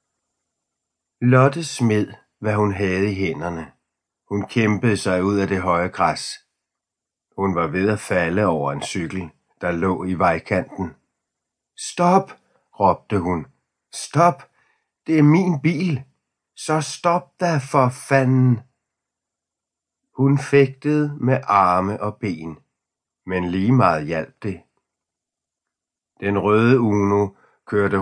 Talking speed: 120 wpm